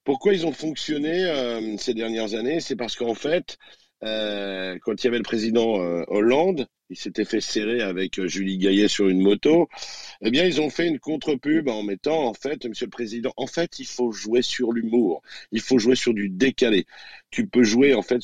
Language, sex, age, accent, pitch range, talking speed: French, male, 50-69, French, 110-150 Hz, 205 wpm